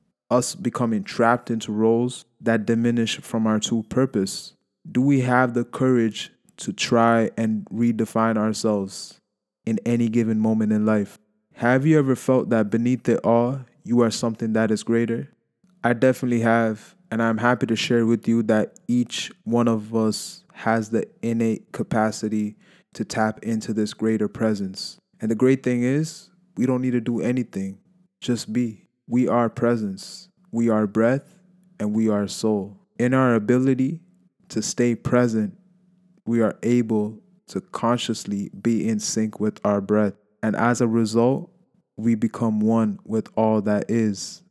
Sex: male